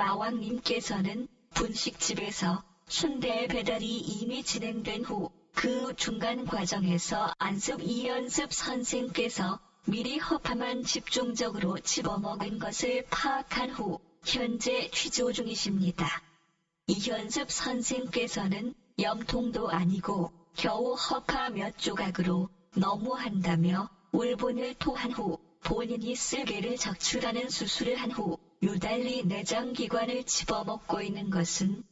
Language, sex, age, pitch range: Korean, male, 40-59, 180-245 Hz